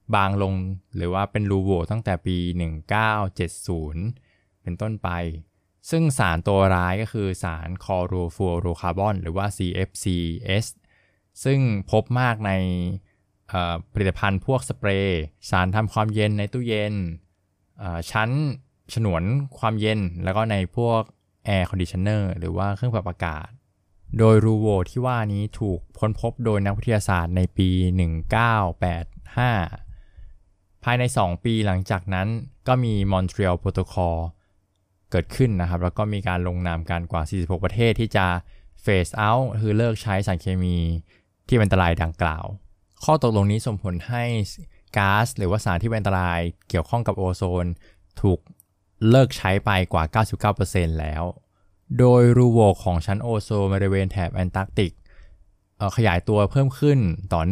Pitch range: 90-110 Hz